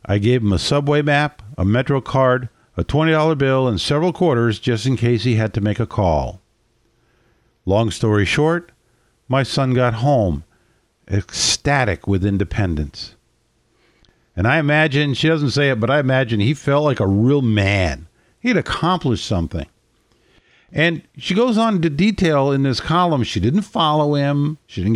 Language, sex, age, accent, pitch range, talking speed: English, male, 50-69, American, 115-150 Hz, 165 wpm